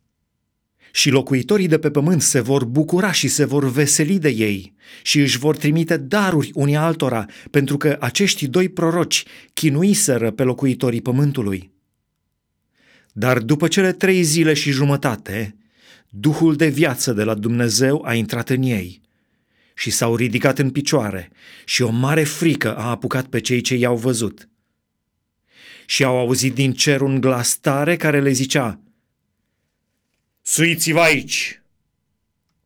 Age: 30-49